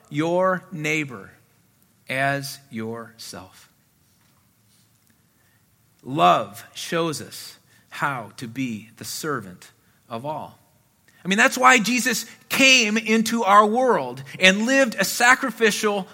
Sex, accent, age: male, American, 40-59